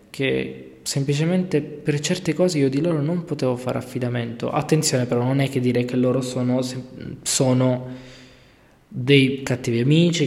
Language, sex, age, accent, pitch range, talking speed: Italian, male, 20-39, native, 115-140 Hz, 145 wpm